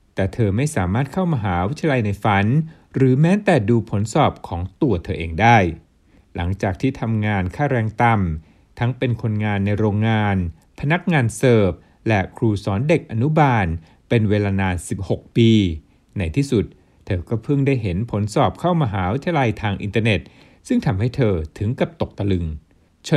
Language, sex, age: Thai, male, 60-79